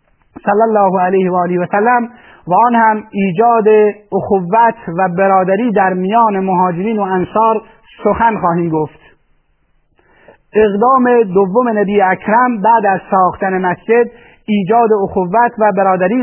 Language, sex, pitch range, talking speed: Persian, male, 190-230 Hz, 115 wpm